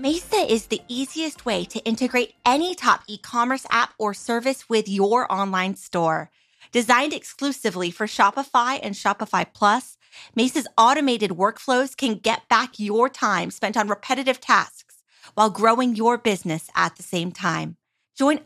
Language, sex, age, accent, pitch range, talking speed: English, female, 30-49, American, 205-265 Hz, 145 wpm